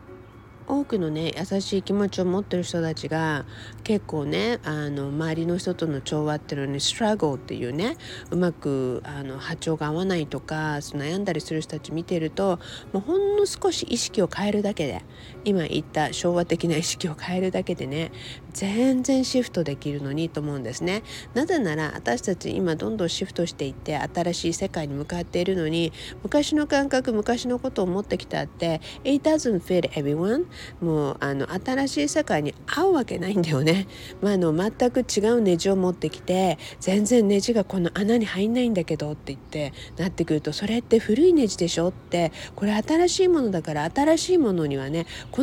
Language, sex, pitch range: Japanese, female, 150-215 Hz